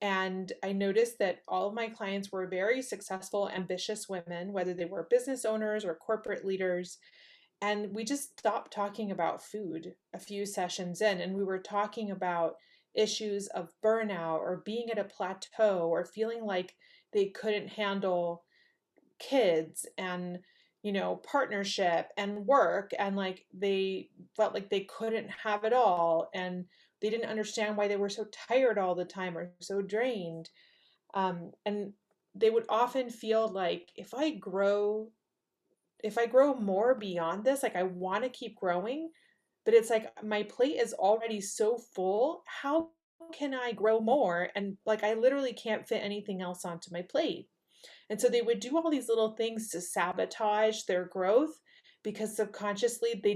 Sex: female